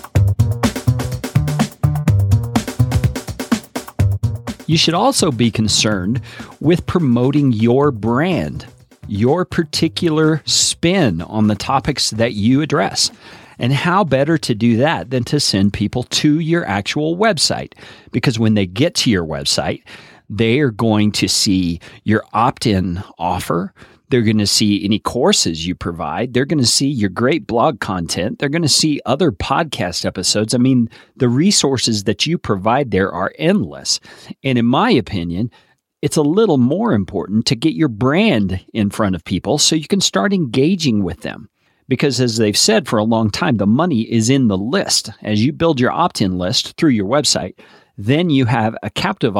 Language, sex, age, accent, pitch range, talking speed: English, male, 40-59, American, 105-145 Hz, 160 wpm